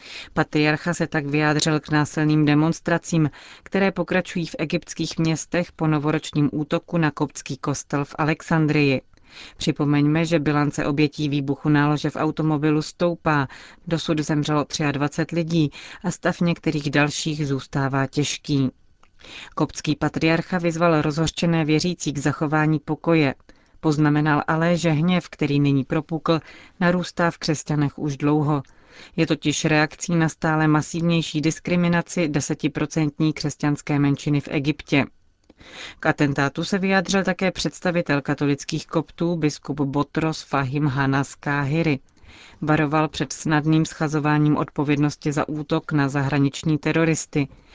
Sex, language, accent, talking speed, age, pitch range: female, Czech, native, 120 wpm, 30-49, 145-165 Hz